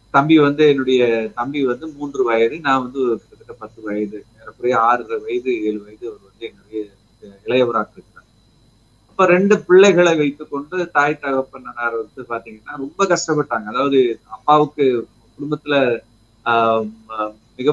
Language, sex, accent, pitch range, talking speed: Tamil, male, native, 120-155 Hz, 130 wpm